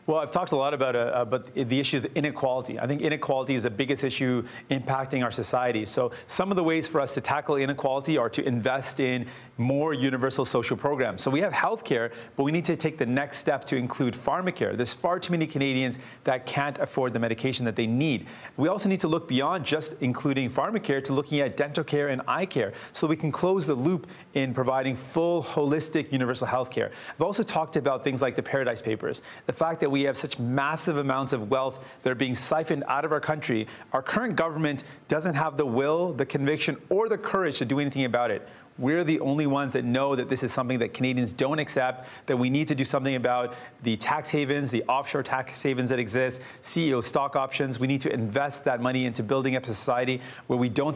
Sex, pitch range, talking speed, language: male, 130-150 Hz, 225 wpm, English